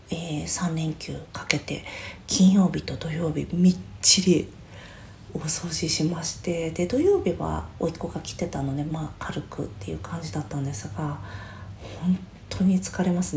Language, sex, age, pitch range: Japanese, female, 40-59, 145-195 Hz